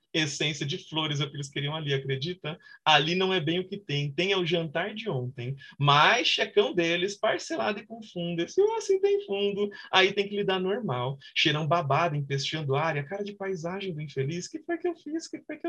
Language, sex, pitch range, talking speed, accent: Portuguese, male, 140-195 Hz, 215 wpm, Brazilian